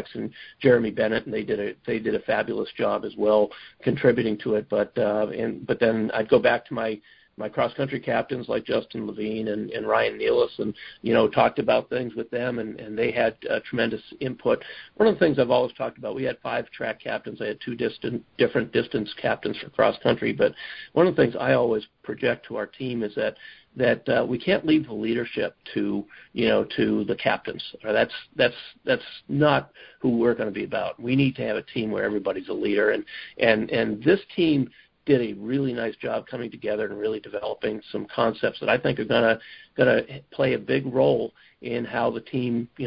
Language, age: English, 50-69